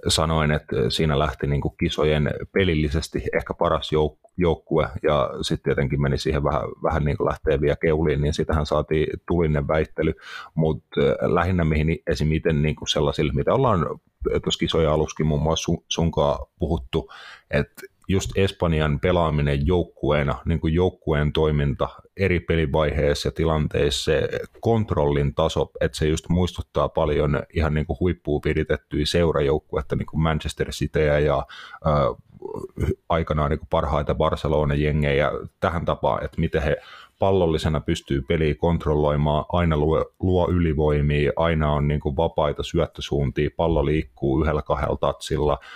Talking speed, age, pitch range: 130 wpm, 30-49, 75-85 Hz